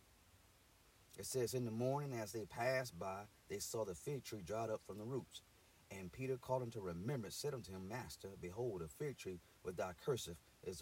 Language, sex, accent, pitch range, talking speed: English, male, American, 95-130 Hz, 205 wpm